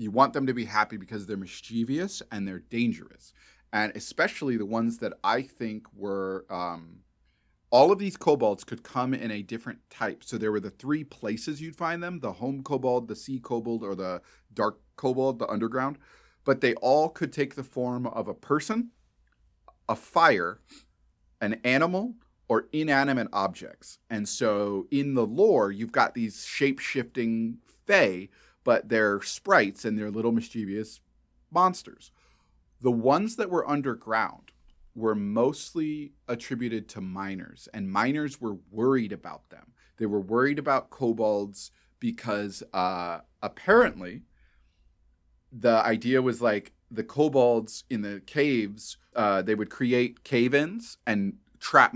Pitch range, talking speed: 100-135 Hz, 145 wpm